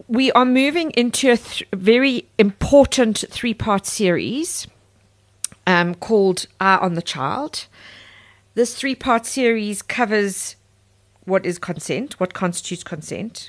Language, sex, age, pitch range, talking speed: English, female, 40-59, 170-225 Hz, 120 wpm